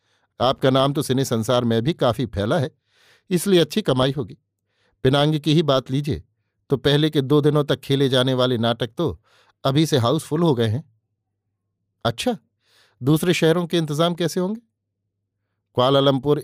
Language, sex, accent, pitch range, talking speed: Hindi, male, native, 110-140 Hz, 160 wpm